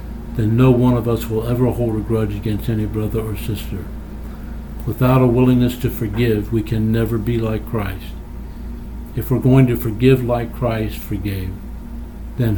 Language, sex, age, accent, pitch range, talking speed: English, male, 60-79, American, 105-120 Hz, 165 wpm